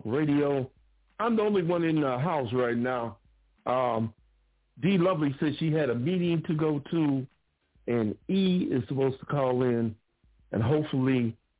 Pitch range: 110-145 Hz